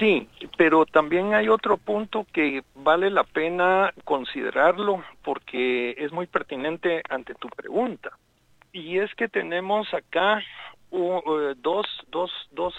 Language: Spanish